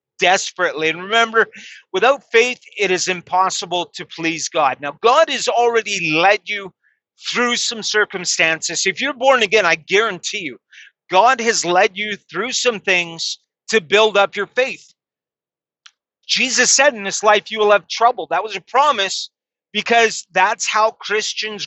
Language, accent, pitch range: English, American, 185-235 Hz